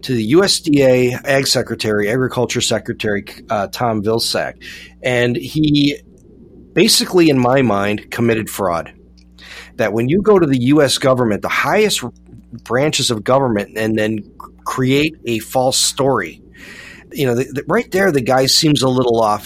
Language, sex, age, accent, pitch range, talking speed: English, male, 40-59, American, 110-140 Hz, 150 wpm